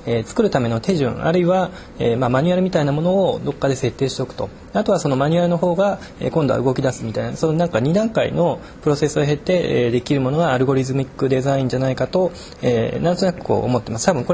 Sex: male